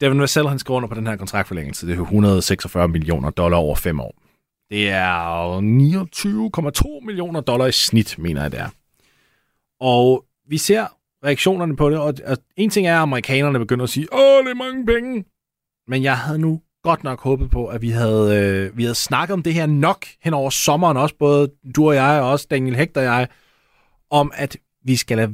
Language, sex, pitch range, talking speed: Danish, male, 110-150 Hz, 200 wpm